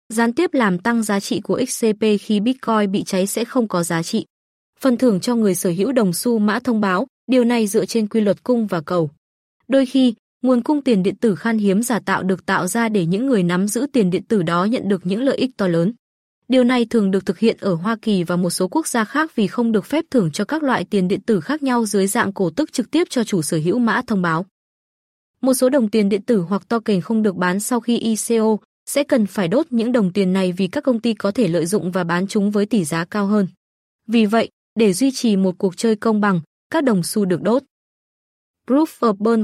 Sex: female